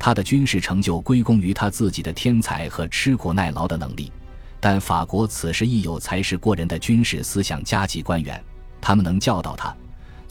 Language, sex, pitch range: Chinese, male, 80-105 Hz